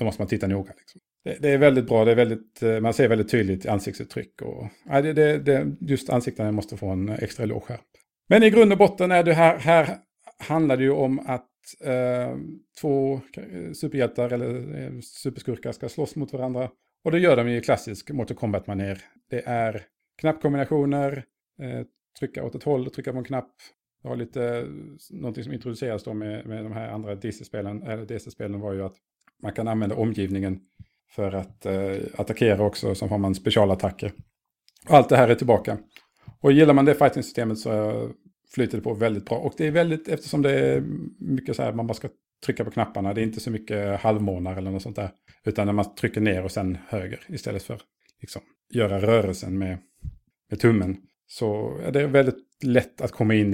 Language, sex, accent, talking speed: English, male, Norwegian, 195 wpm